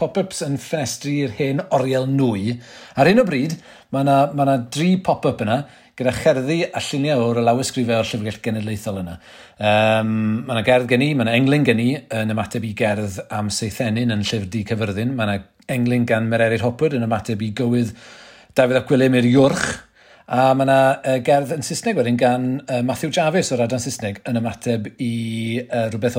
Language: English